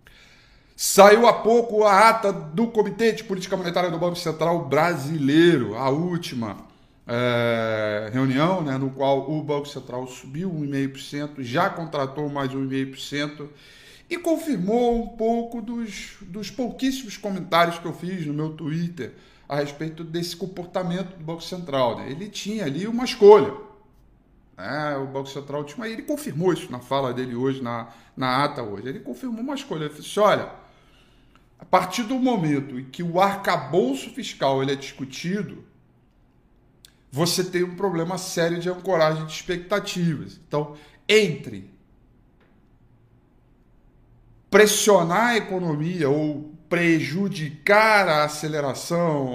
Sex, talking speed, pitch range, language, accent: male, 135 wpm, 135-200 Hz, Portuguese, Brazilian